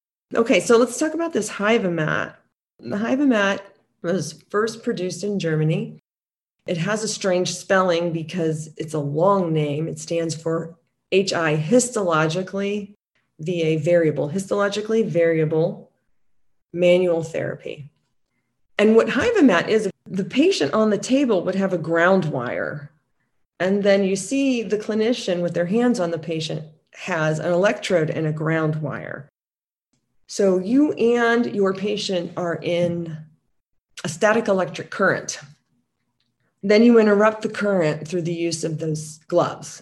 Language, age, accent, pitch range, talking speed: English, 40-59, American, 160-205 Hz, 135 wpm